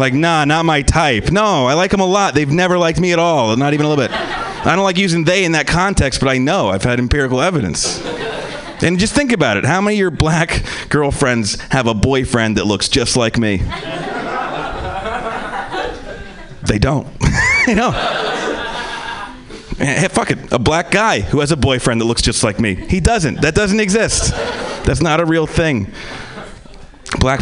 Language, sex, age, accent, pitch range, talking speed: English, male, 30-49, American, 105-150 Hz, 190 wpm